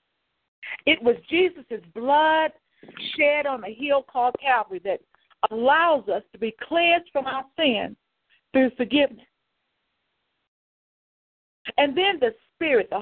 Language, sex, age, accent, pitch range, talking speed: English, female, 50-69, American, 205-310 Hz, 120 wpm